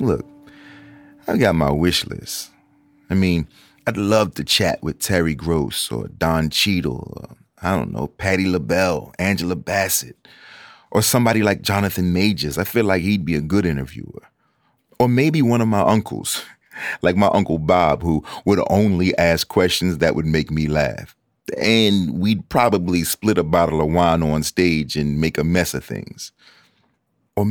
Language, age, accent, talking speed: English, 30-49, American, 165 wpm